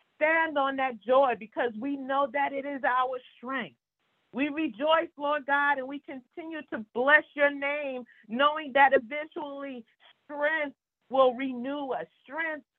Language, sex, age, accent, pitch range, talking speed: English, female, 40-59, American, 225-295 Hz, 145 wpm